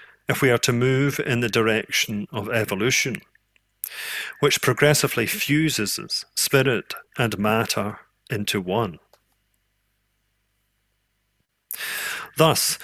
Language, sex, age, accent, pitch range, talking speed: English, male, 40-59, British, 110-150 Hz, 90 wpm